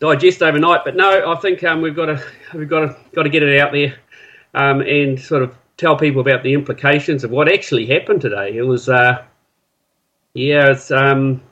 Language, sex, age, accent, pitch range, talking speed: English, male, 40-59, Australian, 125-160 Hz, 205 wpm